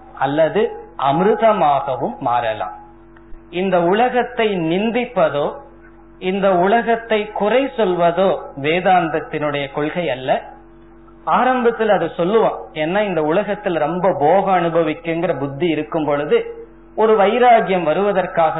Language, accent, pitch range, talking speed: Tamil, native, 140-205 Hz, 75 wpm